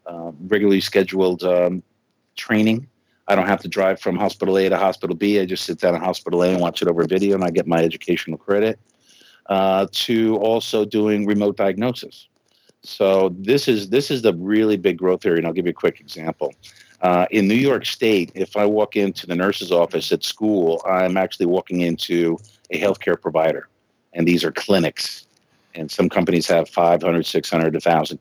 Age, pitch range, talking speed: 50-69, 90-100 Hz, 190 wpm